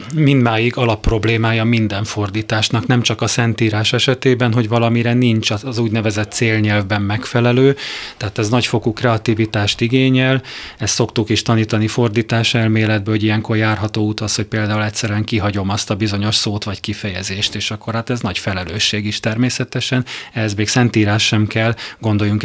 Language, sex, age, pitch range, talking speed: Hungarian, male, 30-49, 105-120 Hz, 150 wpm